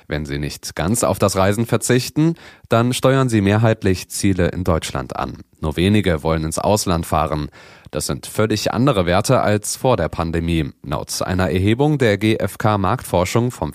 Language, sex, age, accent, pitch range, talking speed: German, male, 30-49, German, 90-115 Hz, 160 wpm